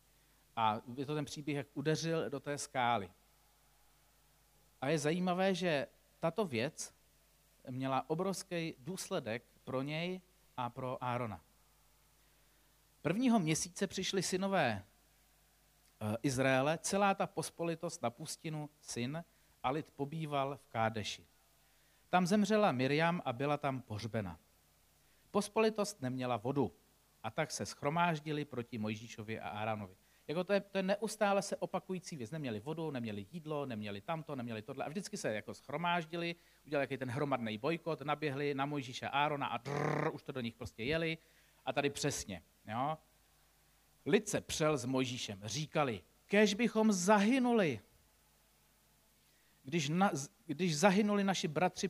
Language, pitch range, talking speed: Czech, 130-185 Hz, 130 wpm